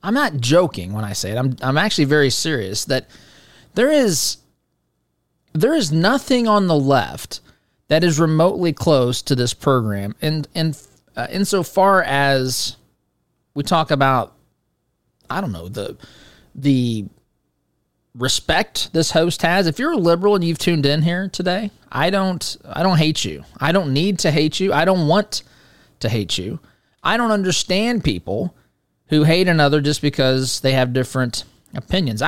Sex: male